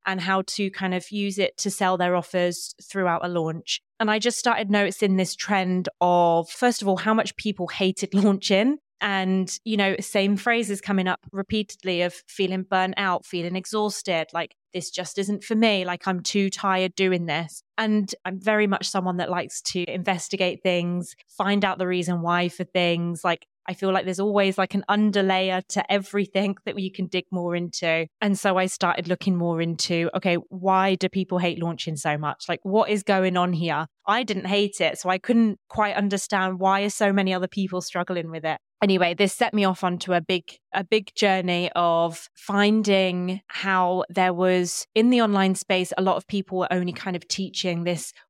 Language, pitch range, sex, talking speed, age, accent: English, 180-200 Hz, female, 195 wpm, 20-39, British